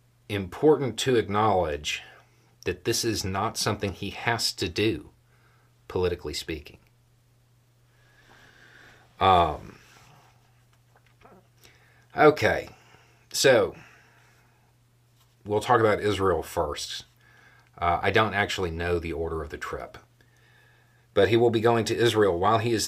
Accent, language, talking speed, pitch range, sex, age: American, English, 110 wpm, 100-120 Hz, male, 40-59